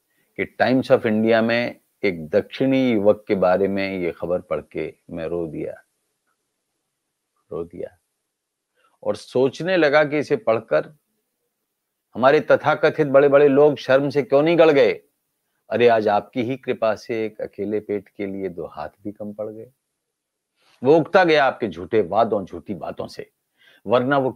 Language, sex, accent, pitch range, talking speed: Hindi, male, native, 105-145 Hz, 160 wpm